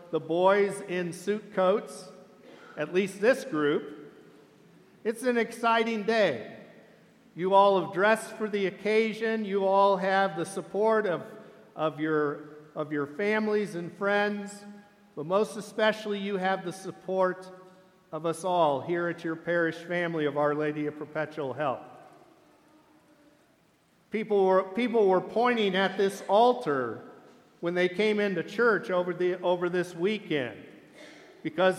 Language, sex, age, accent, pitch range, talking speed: English, male, 50-69, American, 180-220 Hz, 140 wpm